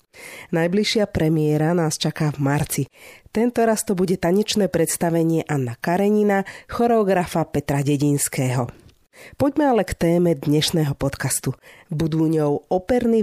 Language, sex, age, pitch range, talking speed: Slovak, female, 40-59, 135-180 Hz, 115 wpm